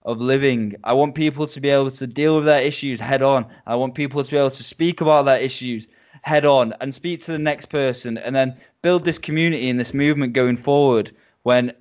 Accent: British